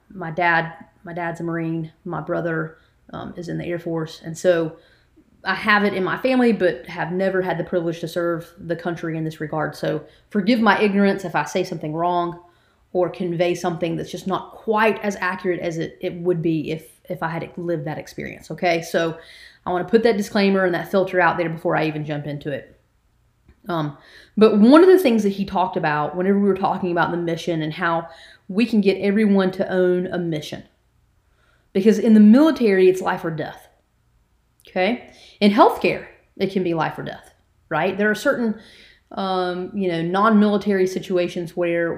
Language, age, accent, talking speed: English, 30-49, American, 195 wpm